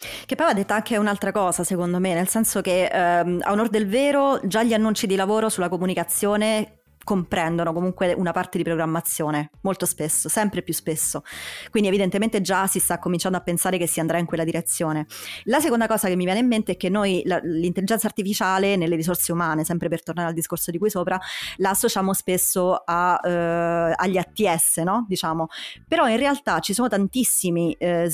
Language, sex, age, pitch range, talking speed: Italian, female, 30-49, 170-200 Hz, 190 wpm